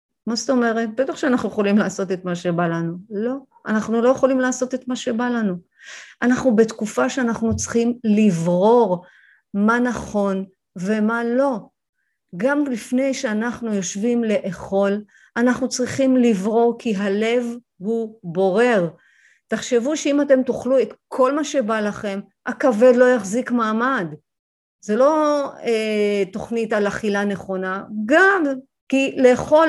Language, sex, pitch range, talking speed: Hebrew, female, 200-260 Hz, 130 wpm